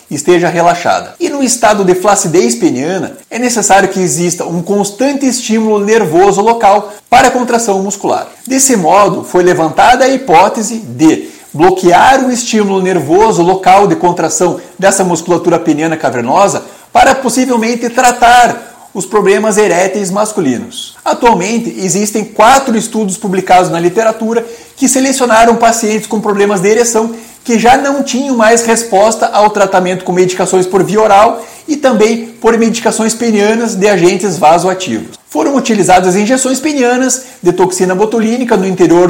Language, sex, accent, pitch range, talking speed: Portuguese, male, Brazilian, 190-240 Hz, 140 wpm